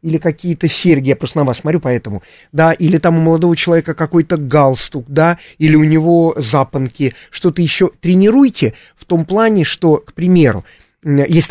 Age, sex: 30-49, male